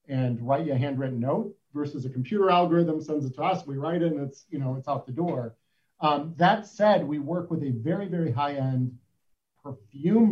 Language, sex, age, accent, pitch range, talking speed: English, male, 50-69, American, 130-170 Hz, 210 wpm